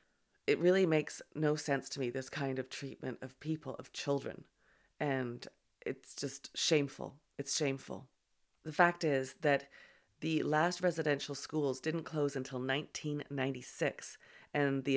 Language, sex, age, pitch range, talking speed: English, female, 30-49, 135-165 Hz, 140 wpm